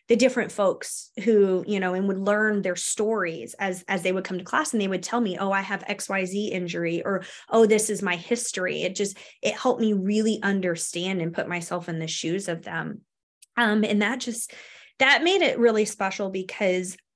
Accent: American